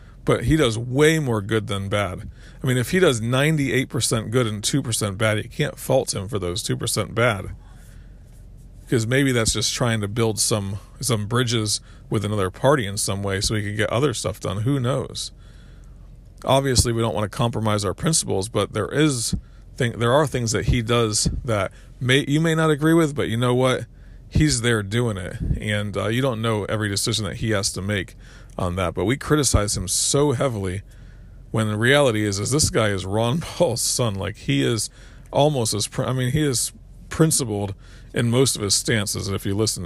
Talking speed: 200 wpm